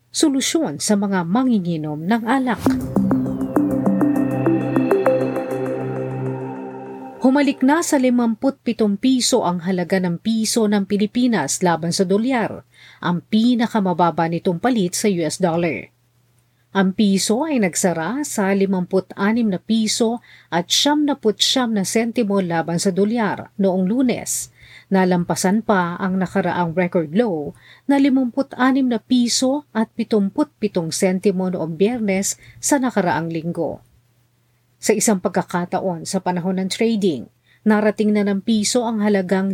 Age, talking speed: 40-59, 115 wpm